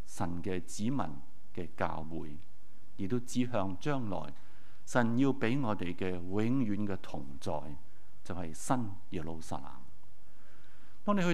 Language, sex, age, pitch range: Chinese, male, 50-69, 95-135 Hz